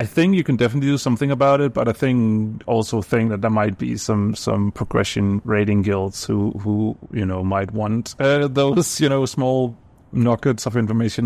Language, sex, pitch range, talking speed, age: English, male, 100-120 Hz, 195 wpm, 30-49